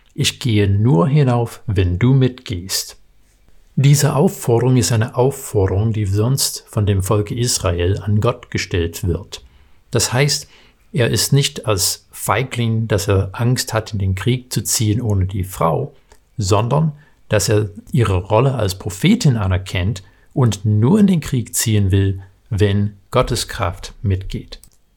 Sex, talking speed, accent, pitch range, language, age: male, 145 wpm, German, 105-135 Hz, German, 60-79